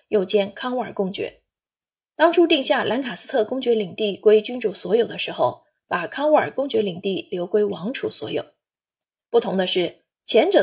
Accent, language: native, Chinese